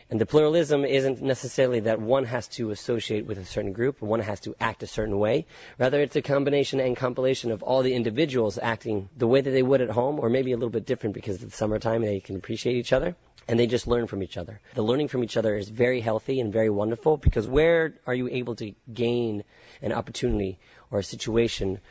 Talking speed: 235 wpm